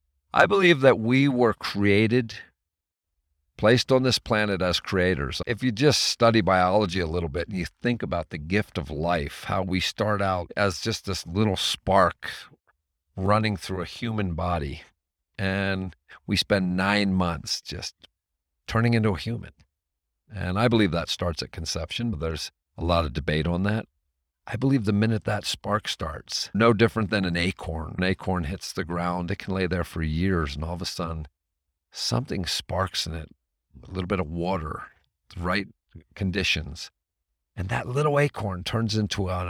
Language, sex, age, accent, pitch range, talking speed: English, male, 50-69, American, 80-115 Hz, 175 wpm